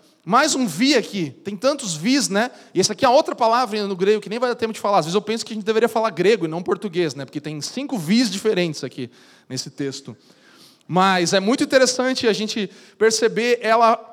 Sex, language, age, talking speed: male, Portuguese, 20-39, 225 wpm